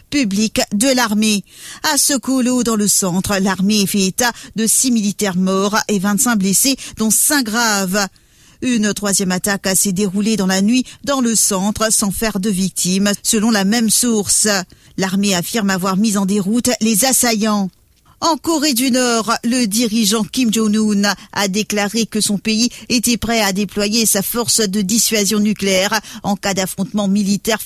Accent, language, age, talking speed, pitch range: French, English, 50-69, 165 wpm, 200-230 Hz